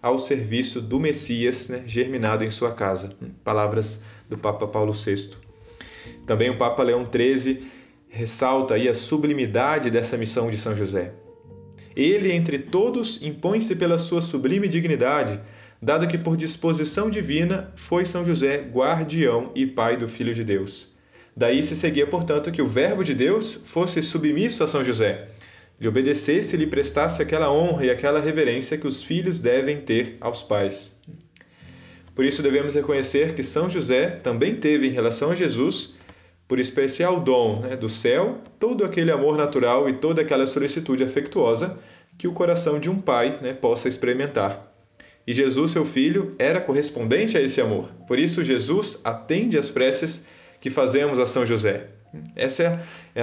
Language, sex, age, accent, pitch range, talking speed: Portuguese, male, 20-39, Brazilian, 115-160 Hz, 160 wpm